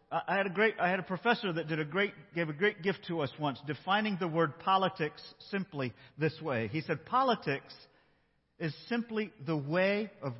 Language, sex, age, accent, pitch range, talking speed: English, male, 50-69, American, 155-225 Hz, 195 wpm